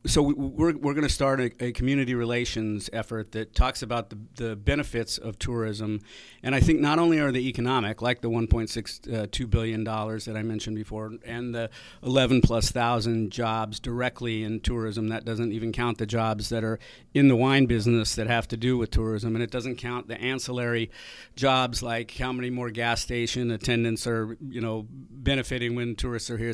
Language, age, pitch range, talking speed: English, 50-69, 110-130 Hz, 200 wpm